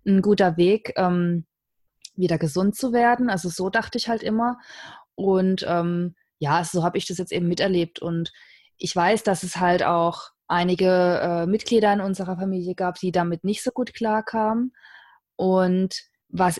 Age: 20-39